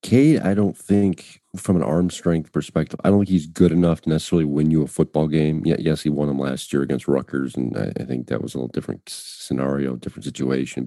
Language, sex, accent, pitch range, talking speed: English, male, American, 70-85 Hz, 225 wpm